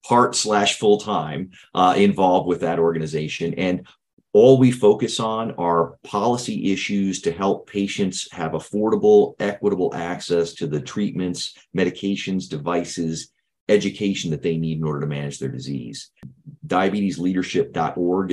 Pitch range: 85-105 Hz